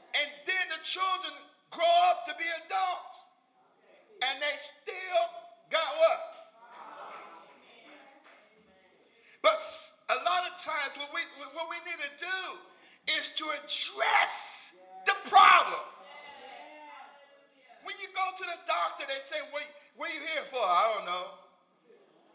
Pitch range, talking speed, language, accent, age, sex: 280-360 Hz, 125 wpm, English, American, 50-69, male